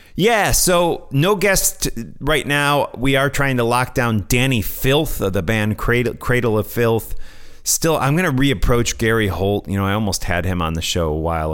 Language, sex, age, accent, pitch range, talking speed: English, male, 30-49, American, 90-120 Hz, 210 wpm